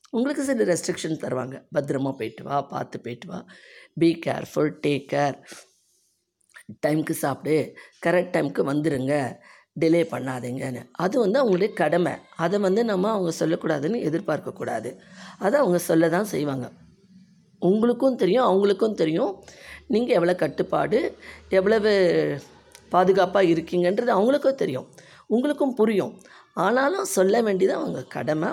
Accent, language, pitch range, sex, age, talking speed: native, Tamil, 150-205 Hz, female, 20-39, 120 wpm